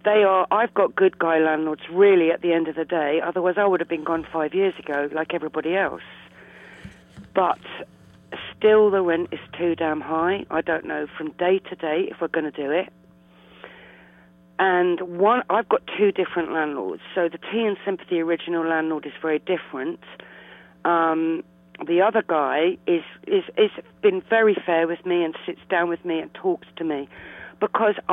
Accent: British